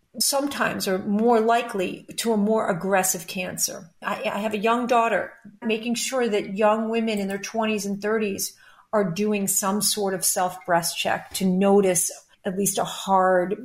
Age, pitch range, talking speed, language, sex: 40-59, 185-215 Hz, 165 wpm, English, female